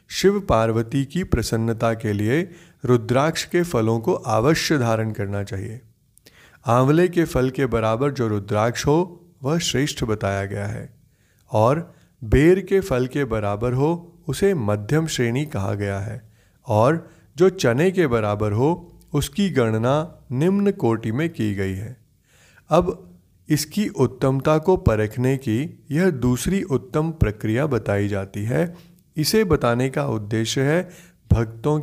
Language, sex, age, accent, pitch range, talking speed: Hindi, male, 30-49, native, 110-160 Hz, 140 wpm